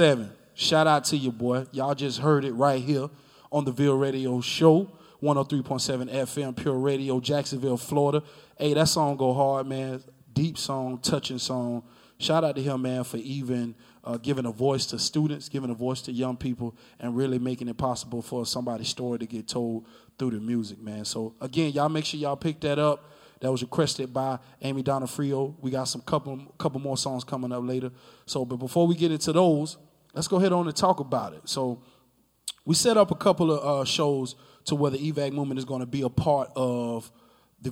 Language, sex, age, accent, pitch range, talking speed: English, male, 20-39, American, 125-145 Hz, 205 wpm